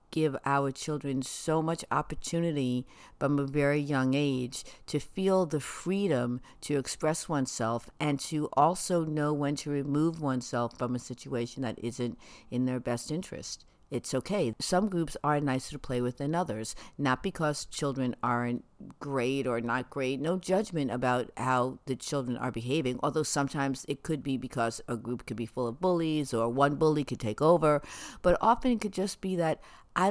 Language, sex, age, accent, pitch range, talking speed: English, female, 60-79, American, 125-155 Hz, 175 wpm